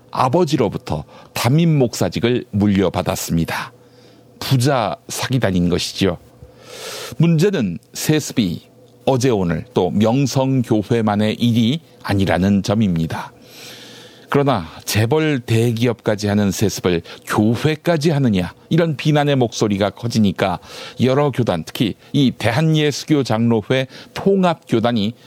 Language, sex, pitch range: Korean, male, 105-150 Hz